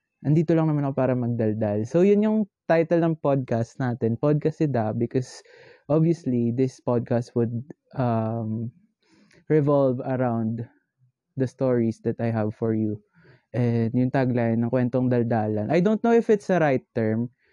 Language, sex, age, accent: Filipino, male, 20-39, native